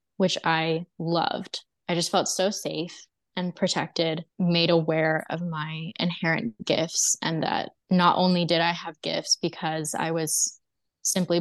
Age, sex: 20-39, female